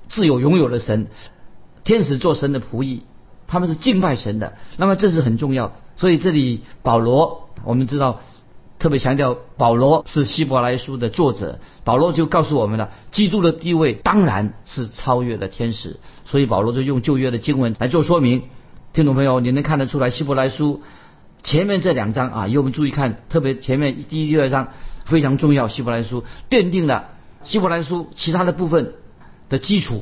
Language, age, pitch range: Chinese, 50-69, 120-155 Hz